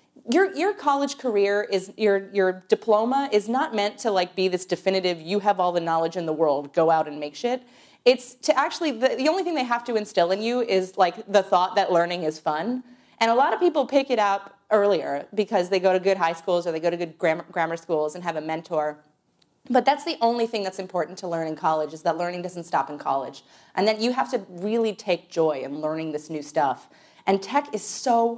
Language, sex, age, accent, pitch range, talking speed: English, female, 30-49, American, 165-235 Hz, 240 wpm